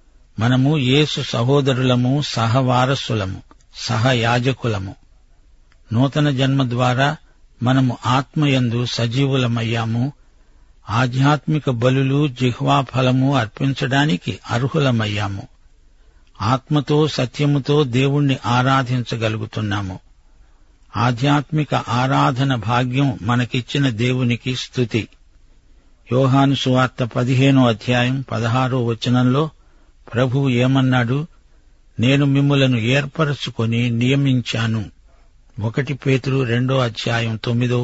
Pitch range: 115-135 Hz